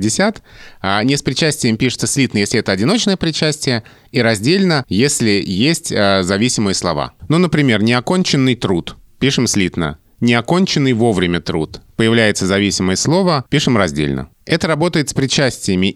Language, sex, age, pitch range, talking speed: Russian, male, 30-49, 100-135 Hz, 125 wpm